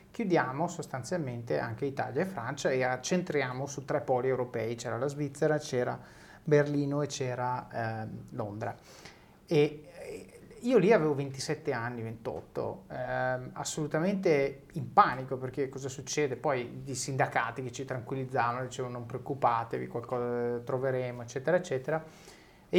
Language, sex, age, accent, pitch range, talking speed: Italian, male, 30-49, native, 125-150 Hz, 130 wpm